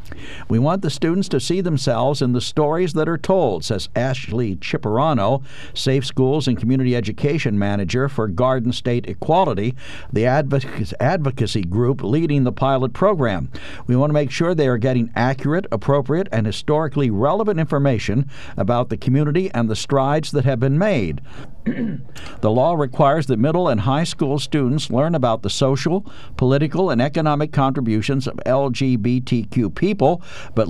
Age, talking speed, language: 60-79, 150 wpm, English